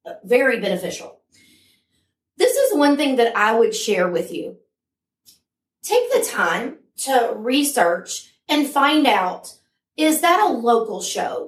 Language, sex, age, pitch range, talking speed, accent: English, female, 30-49, 230-290 Hz, 130 wpm, American